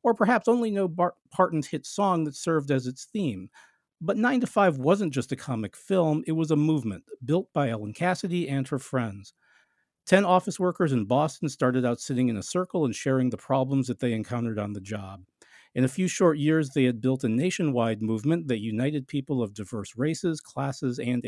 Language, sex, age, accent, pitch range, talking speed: English, male, 50-69, American, 120-165 Hz, 205 wpm